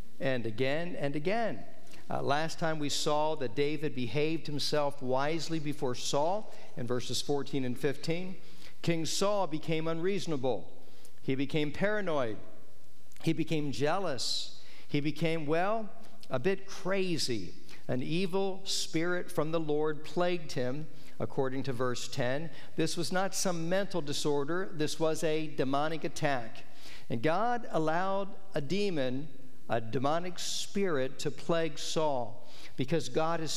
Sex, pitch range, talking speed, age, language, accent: male, 140-175 Hz, 130 wpm, 50-69, English, American